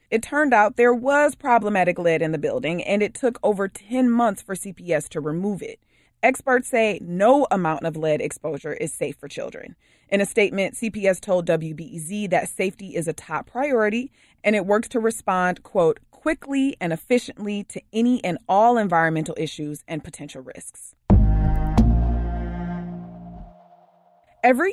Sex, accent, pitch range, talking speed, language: female, American, 170-240 Hz, 155 wpm, English